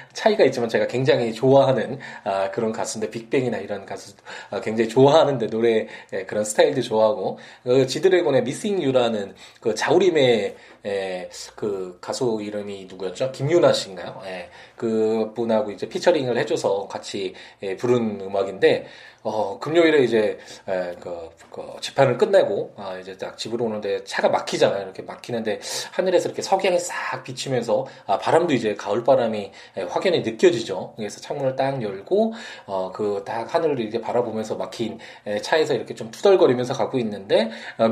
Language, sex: Korean, male